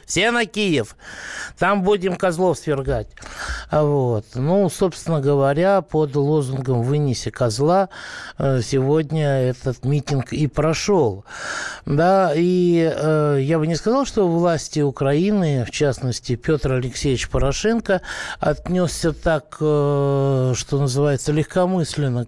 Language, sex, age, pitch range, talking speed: Russian, male, 60-79, 125-165 Hz, 105 wpm